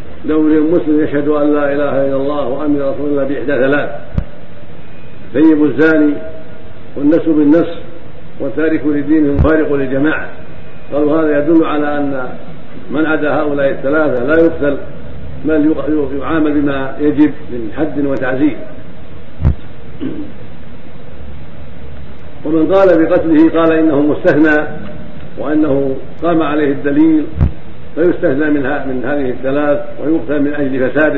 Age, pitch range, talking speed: 50-69, 140-160 Hz, 110 wpm